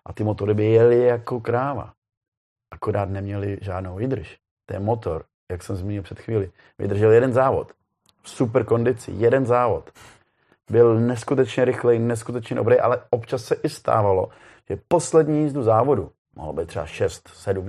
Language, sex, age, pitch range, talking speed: Czech, male, 30-49, 100-120 Hz, 150 wpm